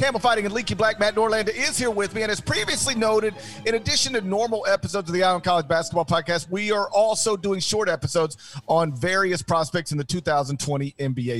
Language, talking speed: English, 205 wpm